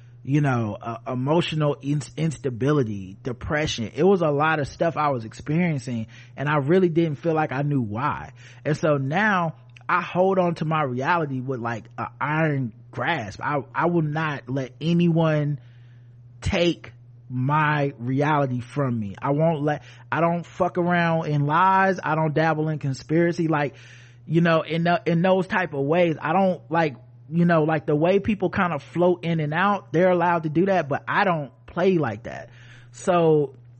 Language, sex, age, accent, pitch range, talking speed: English, male, 30-49, American, 125-165 Hz, 180 wpm